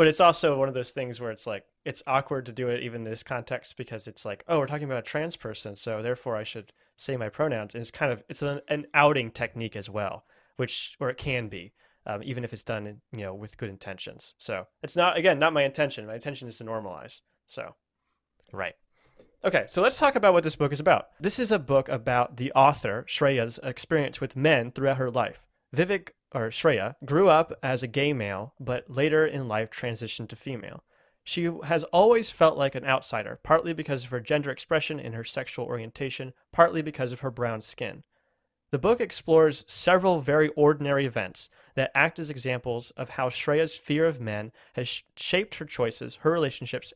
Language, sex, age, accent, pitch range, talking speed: English, male, 20-39, American, 120-155 Hz, 210 wpm